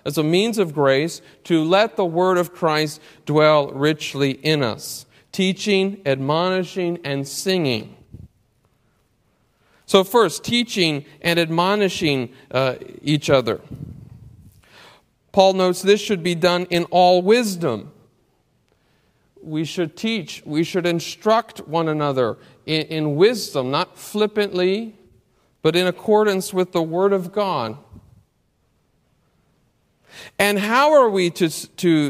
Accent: American